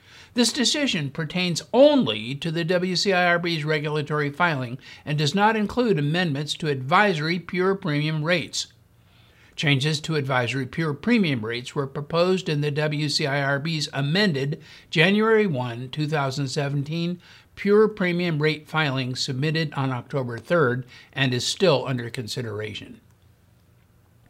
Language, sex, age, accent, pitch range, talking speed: English, male, 60-79, American, 140-190 Hz, 115 wpm